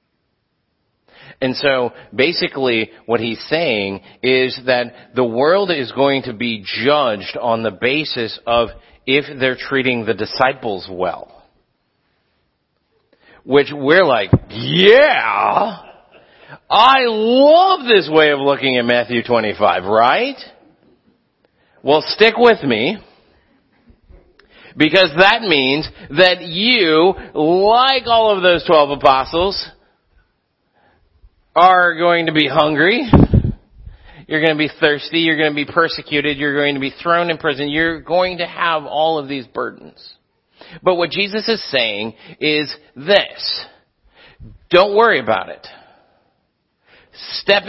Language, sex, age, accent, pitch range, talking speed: English, male, 40-59, American, 130-180 Hz, 120 wpm